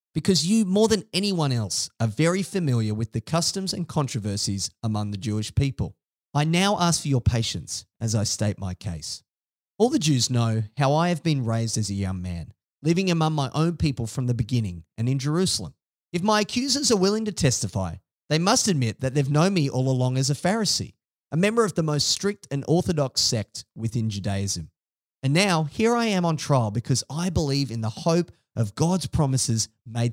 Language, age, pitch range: English, 30-49, 110-175 Hz